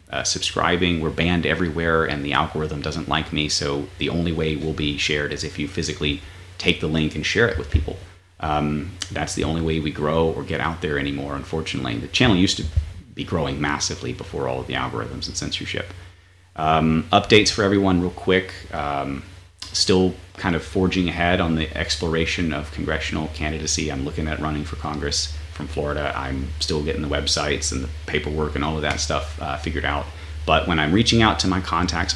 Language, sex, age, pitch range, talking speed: English, male, 30-49, 75-85 Hz, 200 wpm